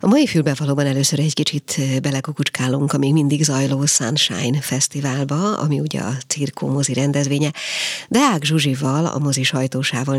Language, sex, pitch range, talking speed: Hungarian, female, 135-155 Hz, 145 wpm